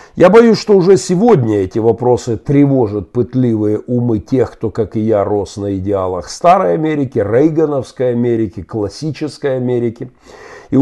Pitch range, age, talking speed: 110-155 Hz, 50-69, 140 wpm